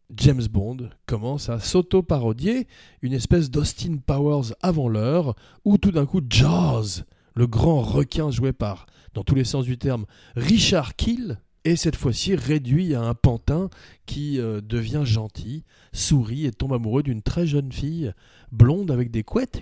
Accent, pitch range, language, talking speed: French, 115-170 Hz, French, 155 wpm